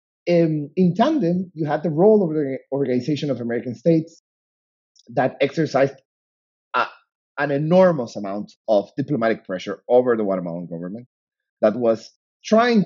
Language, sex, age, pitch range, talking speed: English, male, 30-49, 105-170 Hz, 135 wpm